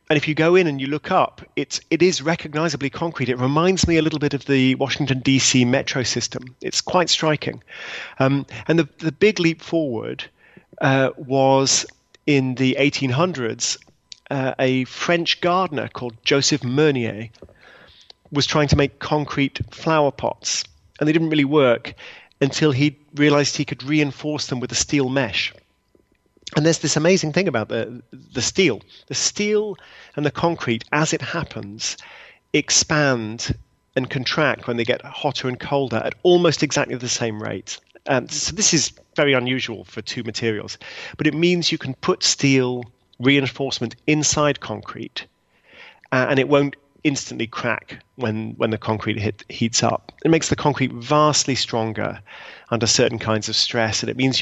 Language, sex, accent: English, male, British